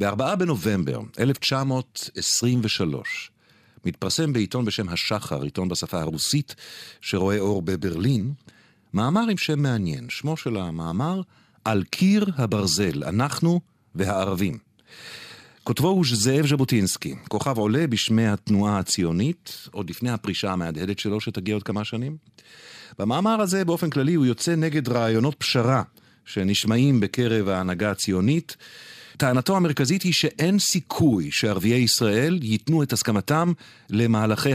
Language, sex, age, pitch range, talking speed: Hebrew, male, 50-69, 100-145 Hz, 115 wpm